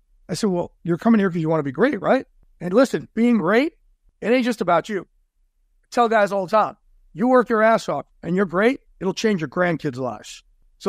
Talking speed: 230 wpm